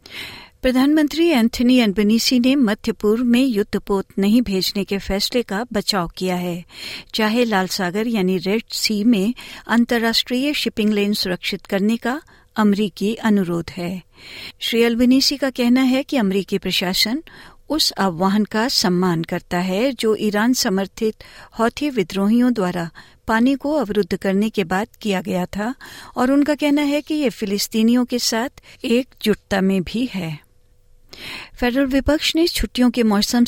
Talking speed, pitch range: 145 wpm, 190-250 Hz